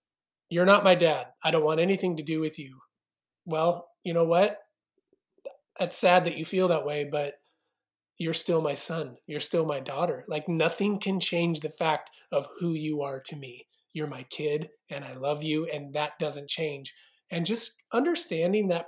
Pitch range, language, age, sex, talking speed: 150-175 Hz, English, 30-49, male, 190 wpm